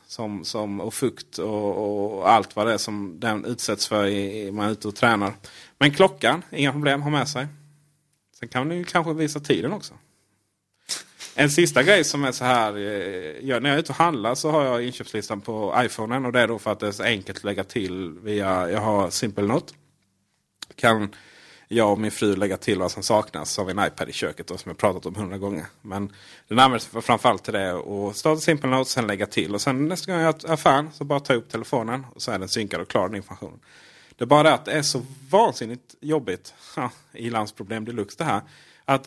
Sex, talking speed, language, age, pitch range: male, 230 wpm, Swedish, 30-49, 105-145 Hz